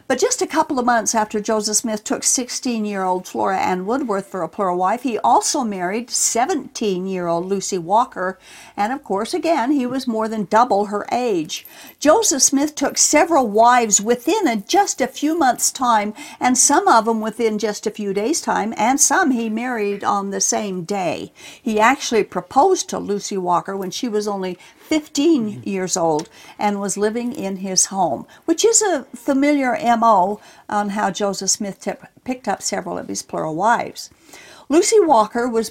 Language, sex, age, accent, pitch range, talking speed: English, female, 60-79, American, 200-275 Hz, 170 wpm